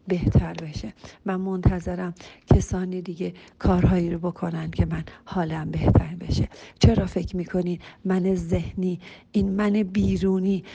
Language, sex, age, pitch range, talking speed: Persian, female, 50-69, 175-200 Hz, 125 wpm